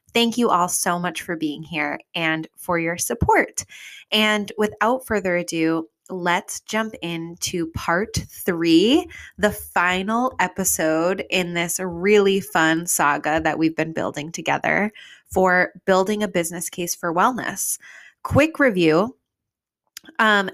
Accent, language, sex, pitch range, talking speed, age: American, English, female, 165-210 Hz, 130 wpm, 20-39